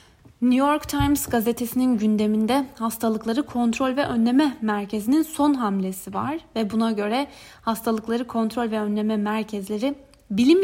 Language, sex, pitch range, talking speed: Turkish, female, 215-270 Hz, 125 wpm